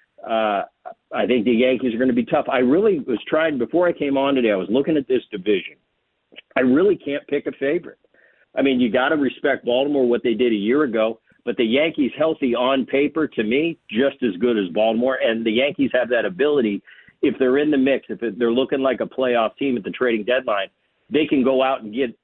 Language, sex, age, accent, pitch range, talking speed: English, male, 50-69, American, 125-165 Hz, 230 wpm